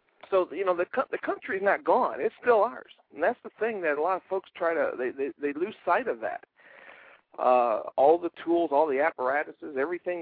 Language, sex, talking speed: English, male, 225 wpm